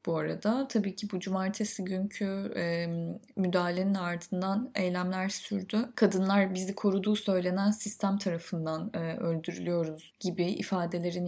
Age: 10-29